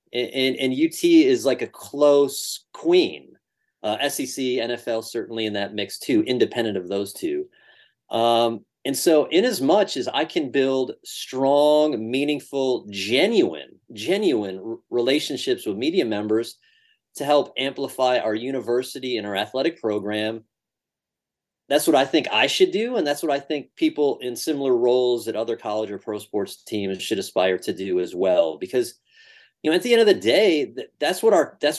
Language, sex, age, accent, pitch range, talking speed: English, male, 30-49, American, 115-155 Hz, 170 wpm